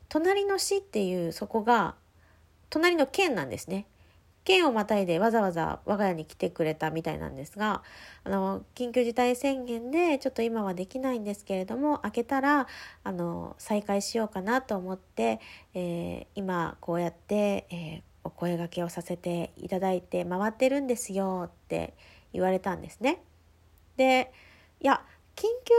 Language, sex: Japanese, female